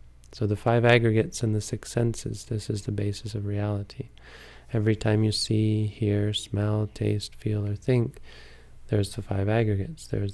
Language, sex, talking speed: English, male, 170 wpm